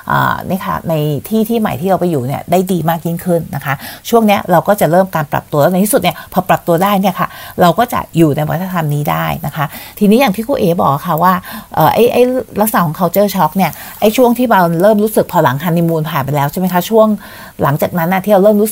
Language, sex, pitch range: Thai, female, 165-210 Hz